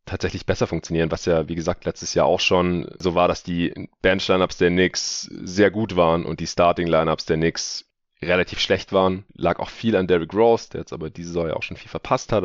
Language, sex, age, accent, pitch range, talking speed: German, male, 30-49, German, 85-105 Hz, 225 wpm